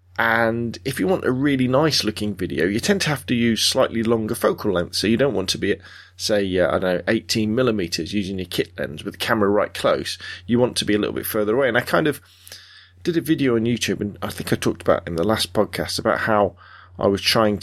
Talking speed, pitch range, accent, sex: 255 wpm, 90-120 Hz, British, male